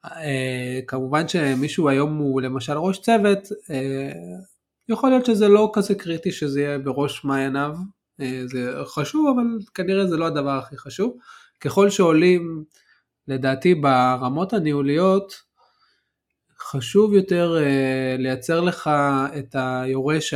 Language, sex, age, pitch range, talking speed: Hebrew, male, 20-39, 130-170 Hz, 120 wpm